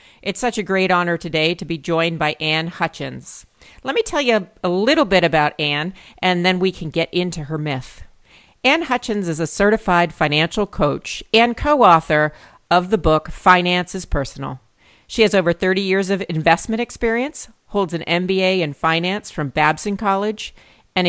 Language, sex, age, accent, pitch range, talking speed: English, female, 40-59, American, 160-205 Hz, 175 wpm